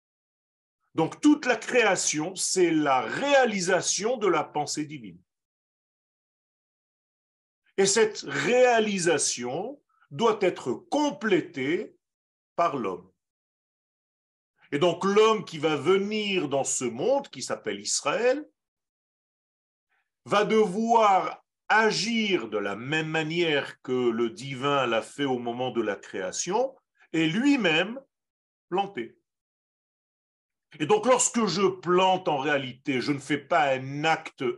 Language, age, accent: French, 40-59, French